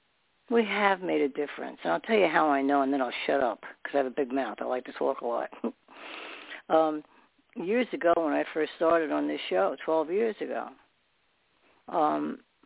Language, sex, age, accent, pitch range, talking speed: English, female, 60-79, American, 145-200 Hz, 205 wpm